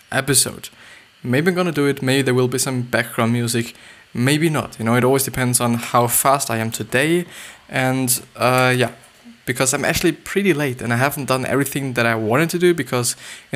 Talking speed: 205 wpm